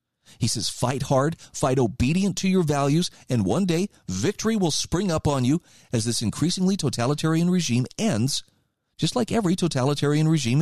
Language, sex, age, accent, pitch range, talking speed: English, male, 40-59, American, 120-165 Hz, 165 wpm